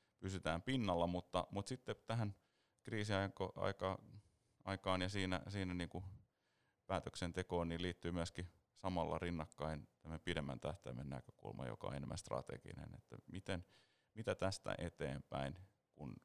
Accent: native